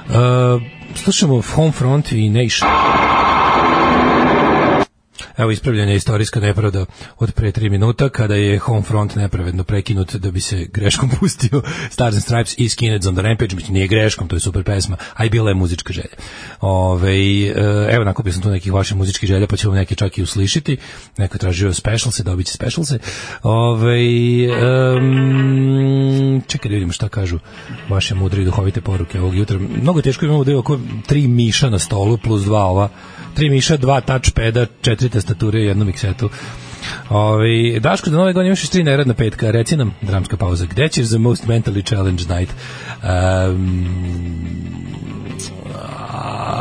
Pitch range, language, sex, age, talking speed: 100-125 Hz, English, male, 40-59, 160 wpm